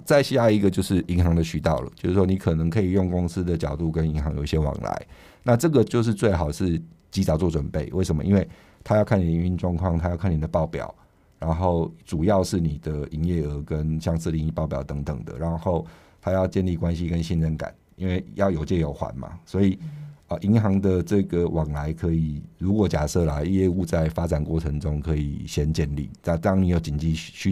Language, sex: Chinese, male